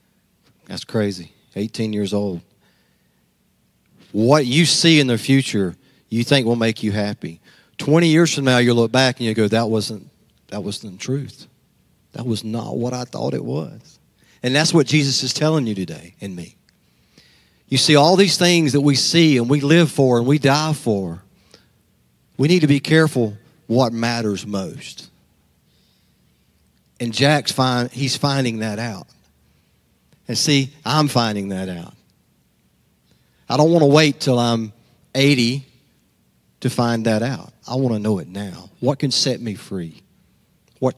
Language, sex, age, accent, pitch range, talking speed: English, male, 40-59, American, 105-140 Hz, 165 wpm